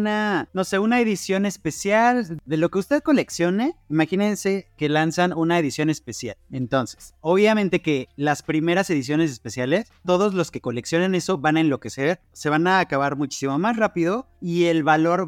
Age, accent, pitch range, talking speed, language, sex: 30-49, Mexican, 145-185 Hz, 165 wpm, Spanish, male